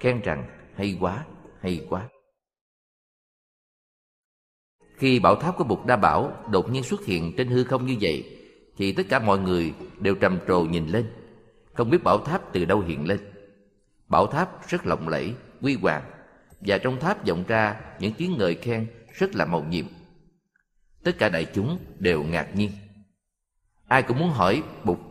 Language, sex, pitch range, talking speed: Vietnamese, male, 95-135 Hz, 170 wpm